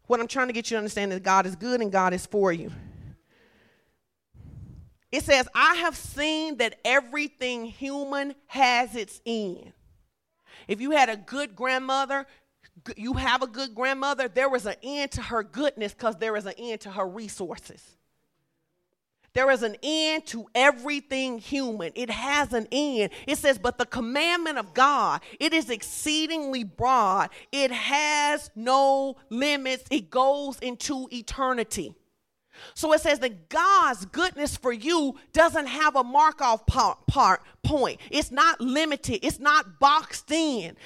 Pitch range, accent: 230-295 Hz, American